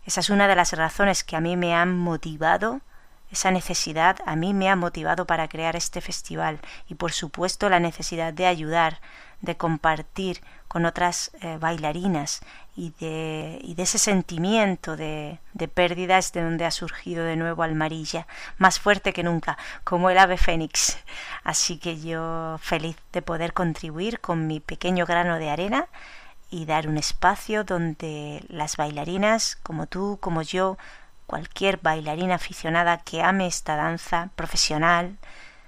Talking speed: 155 wpm